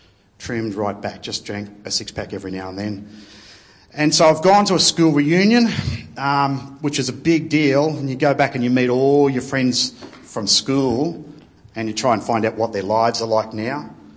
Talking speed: 210 wpm